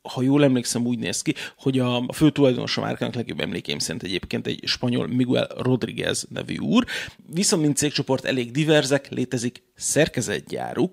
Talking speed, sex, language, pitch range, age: 160 wpm, male, Hungarian, 125-145 Hz, 30-49